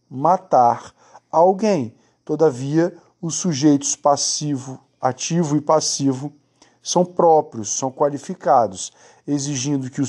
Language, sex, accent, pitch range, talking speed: Portuguese, male, Brazilian, 135-165 Hz, 95 wpm